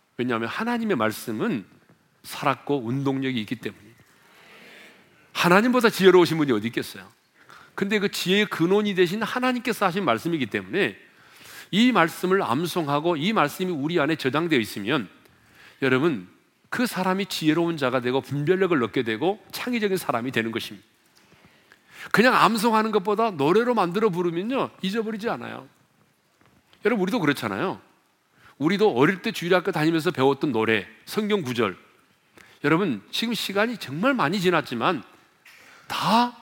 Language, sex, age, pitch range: Korean, male, 40-59, 130-200 Hz